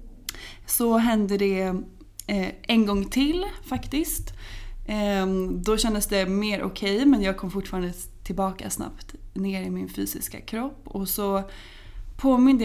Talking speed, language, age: 130 wpm, Swedish, 20-39